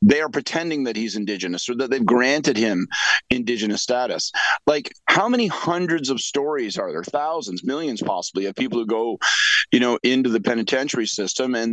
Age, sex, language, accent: 40-59, male, English, American